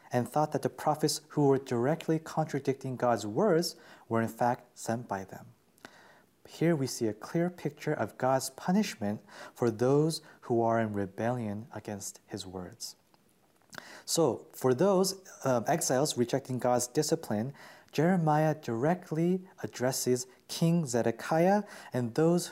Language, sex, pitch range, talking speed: English, male, 115-155 Hz, 135 wpm